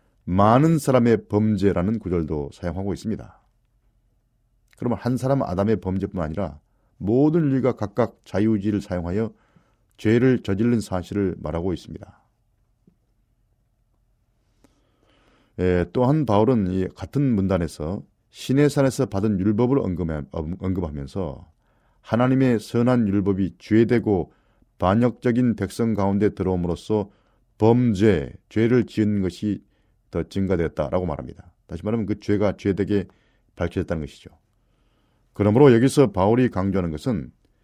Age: 40-59